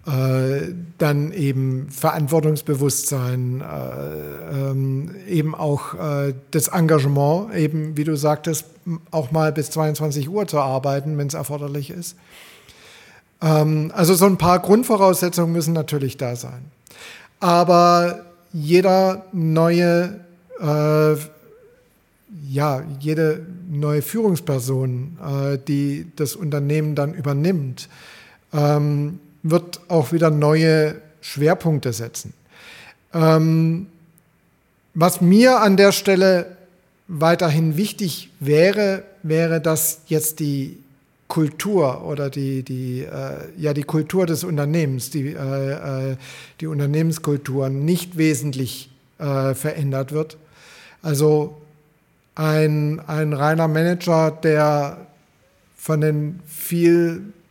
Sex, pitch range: male, 145-170 Hz